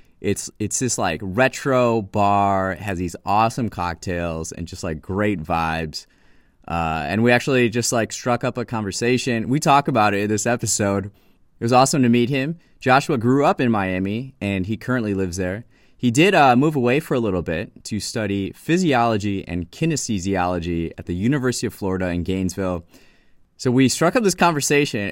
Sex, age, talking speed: male, 20-39, 180 wpm